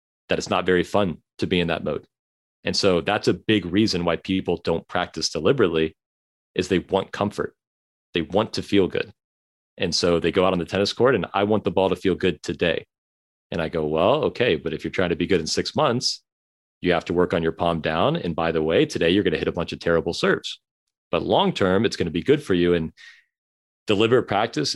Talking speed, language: 235 wpm, English